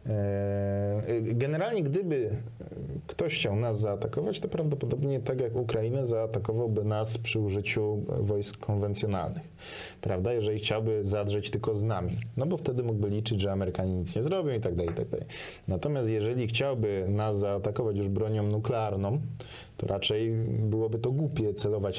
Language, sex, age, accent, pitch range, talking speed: Polish, male, 20-39, native, 105-125 Hz, 145 wpm